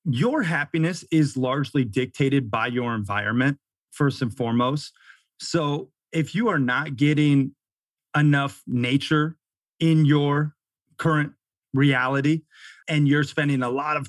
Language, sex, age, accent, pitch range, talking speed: English, male, 30-49, American, 125-155 Hz, 125 wpm